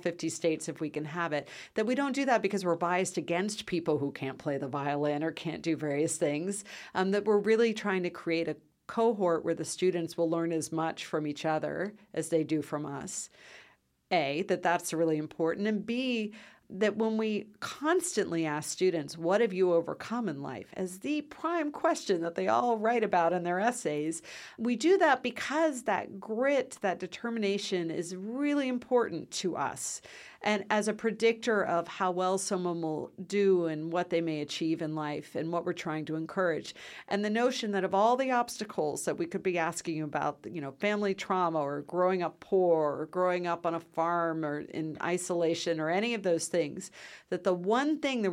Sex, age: female, 50-69